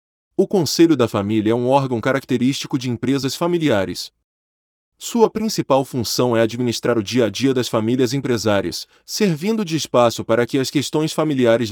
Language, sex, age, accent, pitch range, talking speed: Portuguese, male, 20-39, Brazilian, 115-165 Hz, 150 wpm